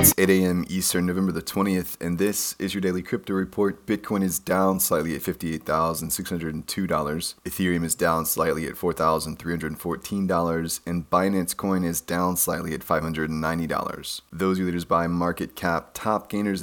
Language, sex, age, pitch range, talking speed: English, male, 30-49, 85-95 Hz, 150 wpm